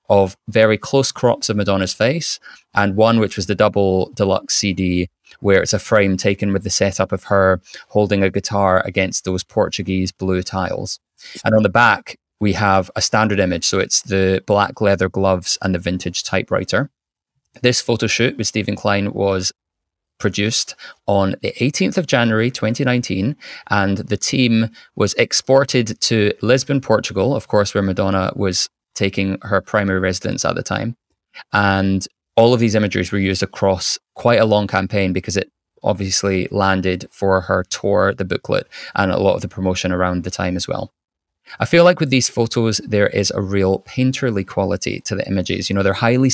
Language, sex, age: English, male, 20-39